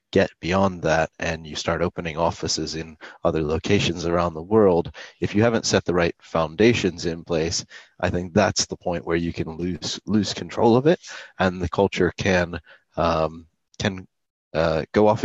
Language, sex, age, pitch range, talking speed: English, male, 30-49, 80-90 Hz, 175 wpm